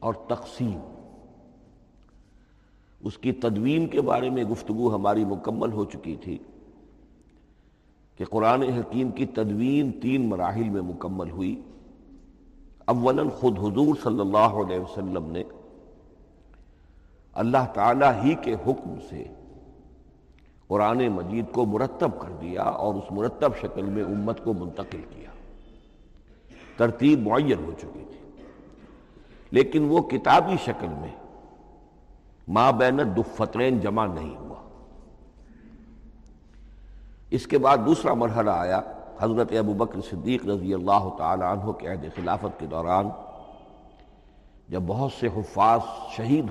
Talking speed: 120 wpm